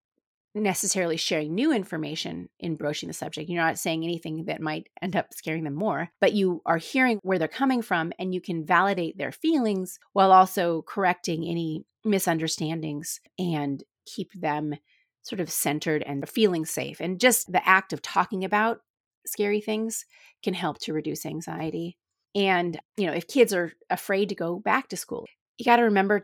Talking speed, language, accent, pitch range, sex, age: 175 wpm, English, American, 160-200 Hz, female, 30-49